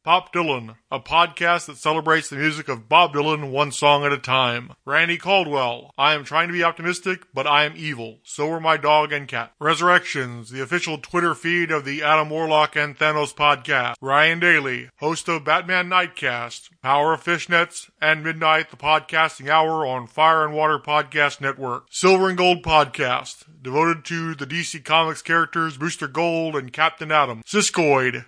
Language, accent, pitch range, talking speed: English, American, 145-170 Hz, 175 wpm